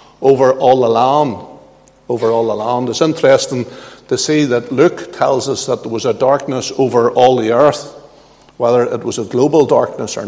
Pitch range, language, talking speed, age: 120-150 Hz, English, 185 wpm, 60-79